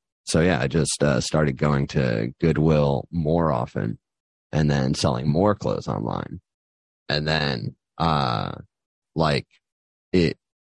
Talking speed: 120 wpm